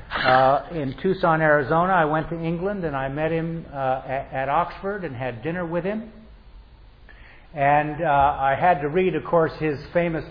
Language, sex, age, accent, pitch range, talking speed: English, male, 50-69, American, 135-180 Hz, 180 wpm